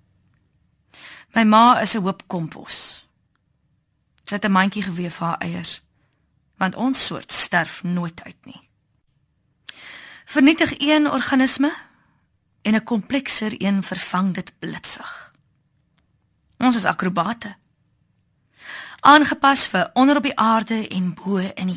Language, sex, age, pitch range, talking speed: French, female, 30-49, 175-240 Hz, 95 wpm